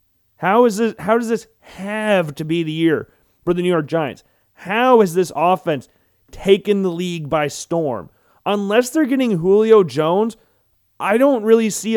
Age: 30-49